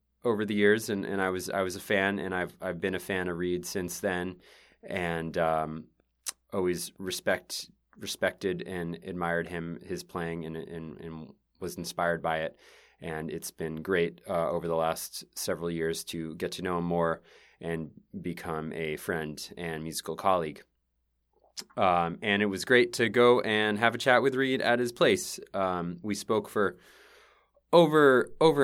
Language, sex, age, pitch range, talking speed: English, male, 20-39, 85-110 Hz, 175 wpm